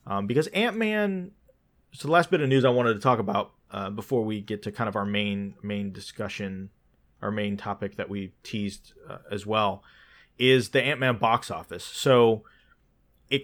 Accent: American